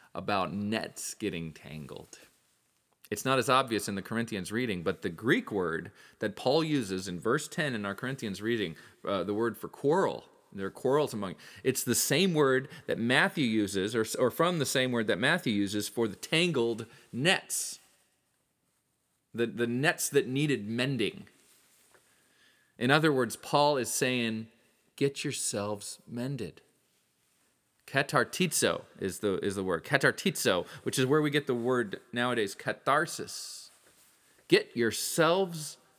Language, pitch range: English, 100-135 Hz